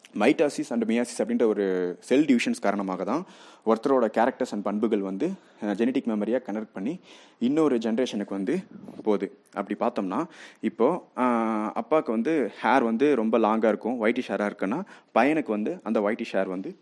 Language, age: Tamil, 30-49